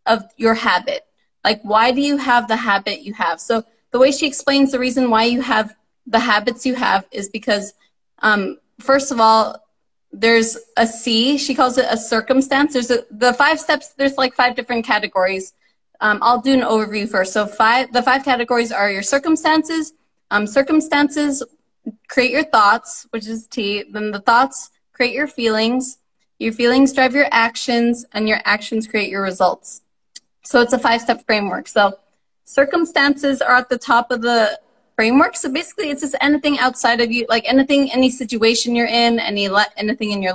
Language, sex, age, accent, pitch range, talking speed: English, female, 20-39, American, 215-265 Hz, 180 wpm